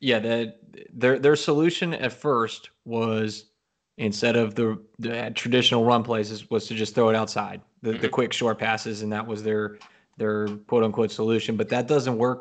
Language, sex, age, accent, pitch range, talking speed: English, male, 20-39, American, 110-125 Hz, 185 wpm